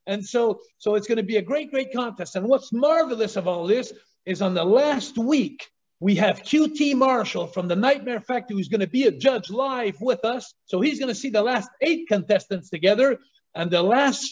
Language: English